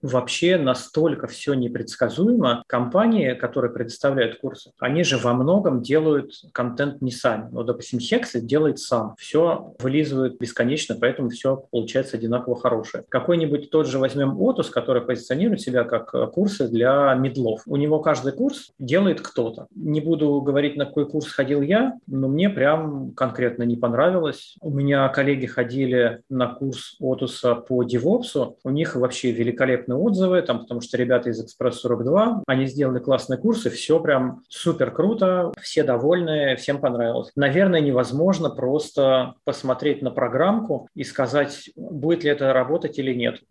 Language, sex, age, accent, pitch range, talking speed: Russian, male, 20-39, native, 125-150 Hz, 150 wpm